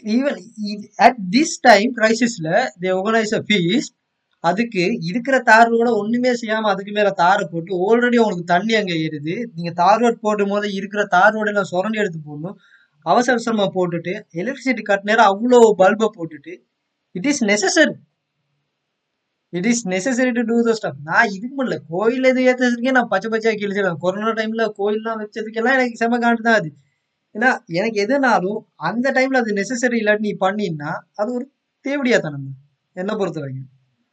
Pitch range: 180-245 Hz